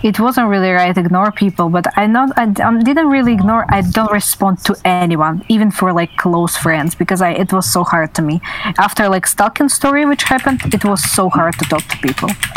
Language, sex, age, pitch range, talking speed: English, female, 20-39, 185-245 Hz, 230 wpm